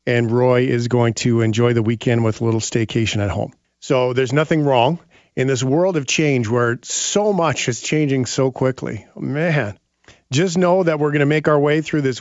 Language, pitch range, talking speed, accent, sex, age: English, 115-145 Hz, 205 wpm, American, male, 40-59